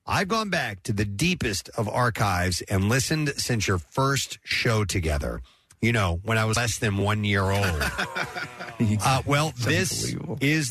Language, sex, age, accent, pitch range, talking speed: English, male, 40-59, American, 100-150 Hz, 165 wpm